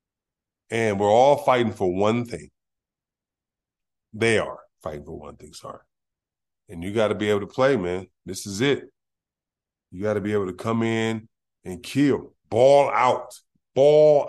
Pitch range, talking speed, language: 105-130 Hz, 155 wpm, English